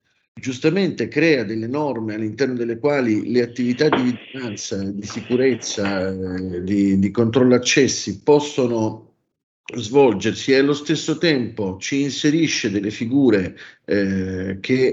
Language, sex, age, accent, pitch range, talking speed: Italian, male, 50-69, native, 105-135 Hz, 115 wpm